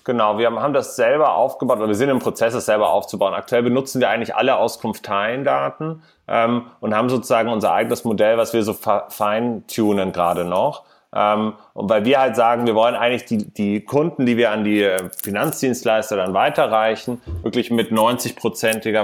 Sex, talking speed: male, 165 wpm